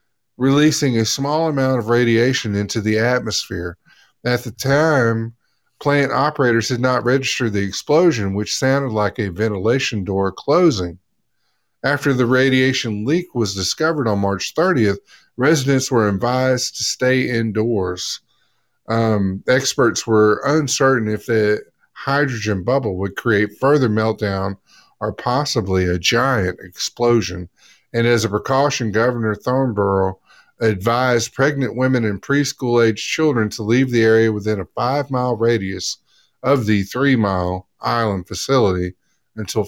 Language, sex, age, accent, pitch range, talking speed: English, male, 50-69, American, 105-130 Hz, 130 wpm